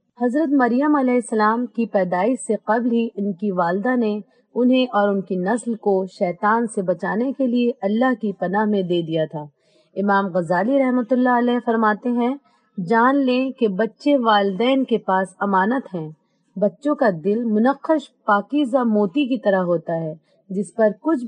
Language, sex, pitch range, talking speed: Urdu, female, 190-245 Hz, 170 wpm